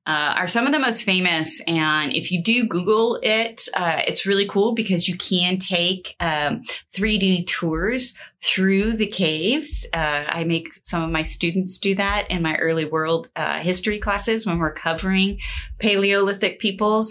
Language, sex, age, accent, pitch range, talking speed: English, female, 30-49, American, 165-215 Hz, 170 wpm